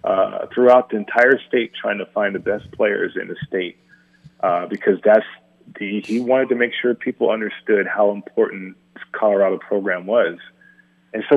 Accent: American